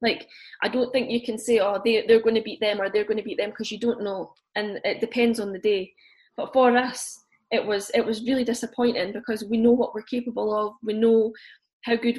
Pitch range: 210-240 Hz